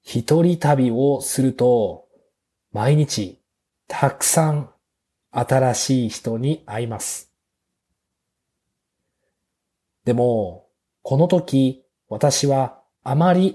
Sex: male